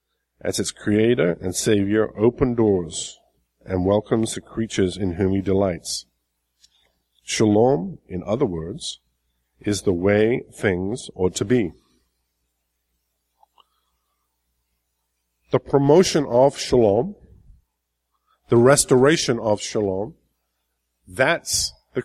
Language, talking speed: English, 100 wpm